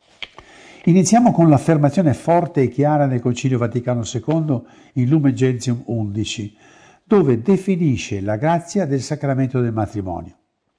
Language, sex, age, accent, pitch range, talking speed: Italian, male, 60-79, native, 115-170 Hz, 120 wpm